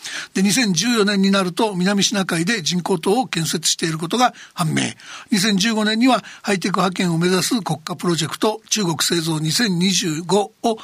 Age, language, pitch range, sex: 60-79, Japanese, 175-225 Hz, male